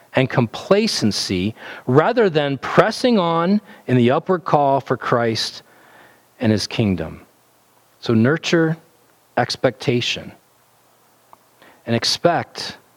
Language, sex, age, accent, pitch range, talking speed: English, male, 40-59, American, 110-150 Hz, 95 wpm